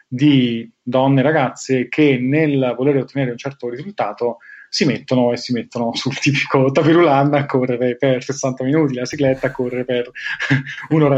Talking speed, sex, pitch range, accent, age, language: 160 wpm, male, 125-145 Hz, native, 30-49, Italian